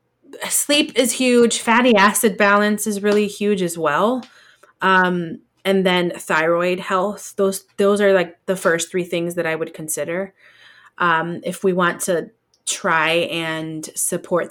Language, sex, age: English, female, 20-39